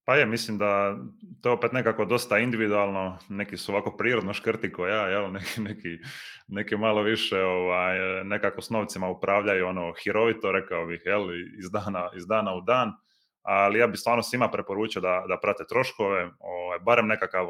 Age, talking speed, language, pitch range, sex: 20-39, 170 wpm, Croatian, 95-115 Hz, male